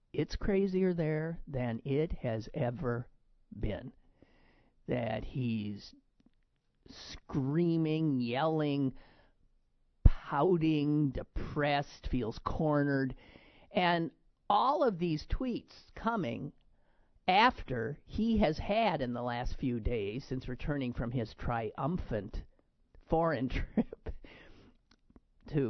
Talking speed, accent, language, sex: 90 wpm, American, English, male